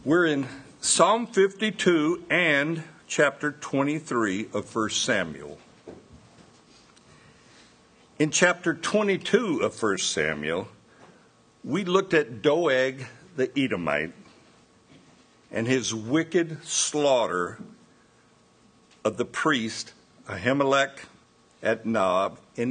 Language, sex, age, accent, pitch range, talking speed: English, male, 60-79, American, 115-160 Hz, 85 wpm